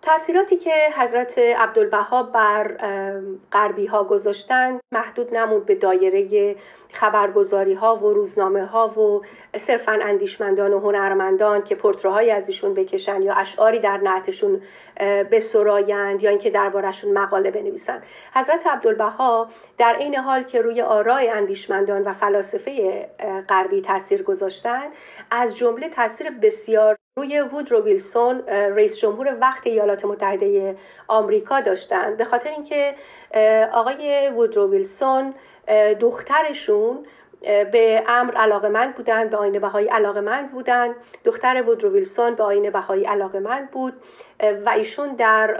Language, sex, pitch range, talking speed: Persian, female, 205-260 Hz, 120 wpm